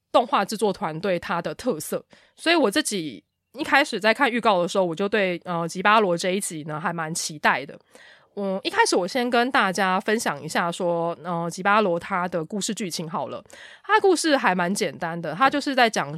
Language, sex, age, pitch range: Chinese, female, 20-39, 175-235 Hz